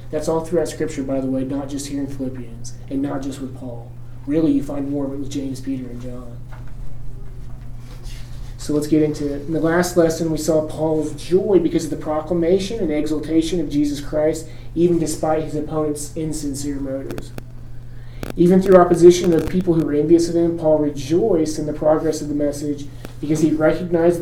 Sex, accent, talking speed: male, American, 190 wpm